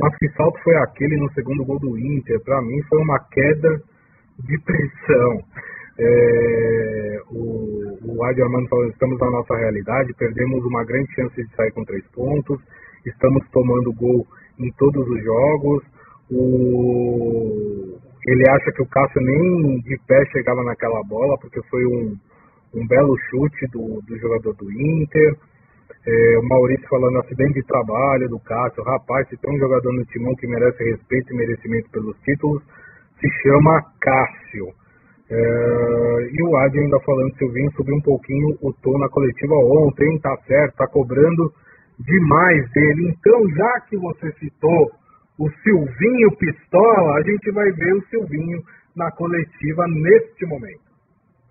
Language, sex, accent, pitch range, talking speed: Portuguese, male, Brazilian, 120-150 Hz, 150 wpm